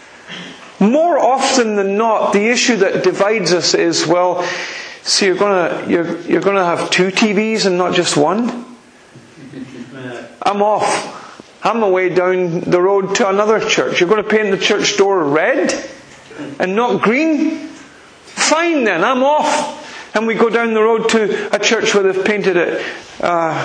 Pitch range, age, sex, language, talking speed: 160-215 Hz, 40-59, male, English, 160 wpm